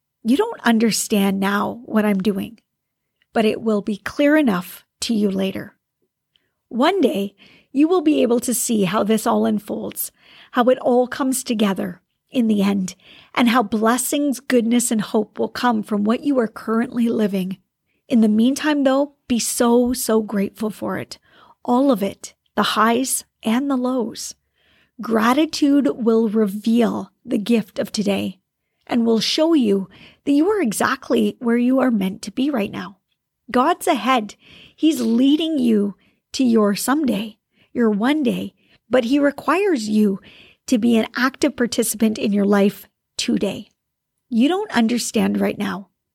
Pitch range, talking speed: 215-265 Hz, 155 wpm